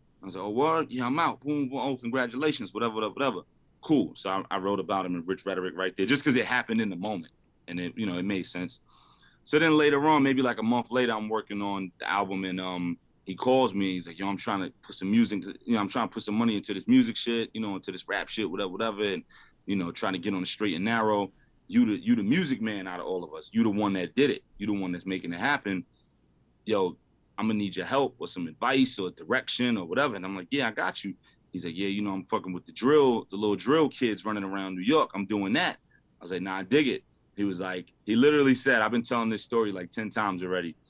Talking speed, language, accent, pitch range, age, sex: 275 wpm, English, American, 95-125 Hz, 30-49, male